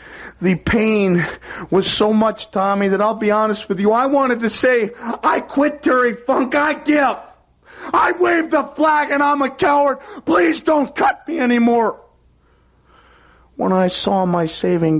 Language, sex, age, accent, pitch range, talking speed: English, male, 40-59, American, 170-235 Hz, 160 wpm